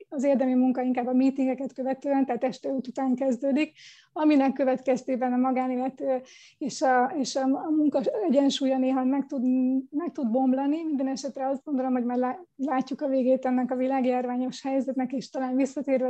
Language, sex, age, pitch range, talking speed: Hungarian, female, 20-39, 255-275 Hz, 160 wpm